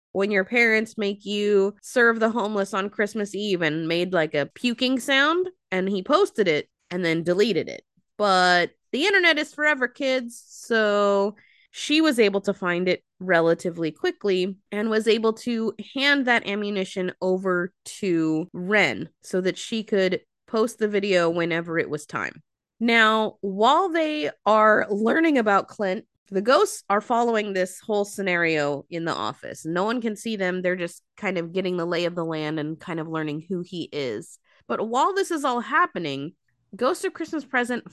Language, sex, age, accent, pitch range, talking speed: English, female, 20-39, American, 180-235 Hz, 175 wpm